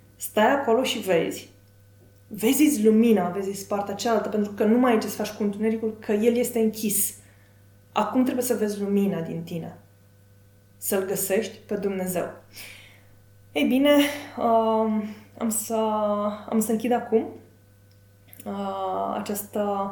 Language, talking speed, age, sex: Romanian, 135 wpm, 20-39, female